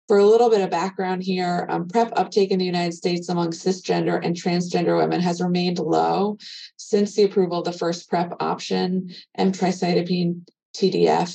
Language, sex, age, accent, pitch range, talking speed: English, female, 20-39, American, 175-200 Hz, 170 wpm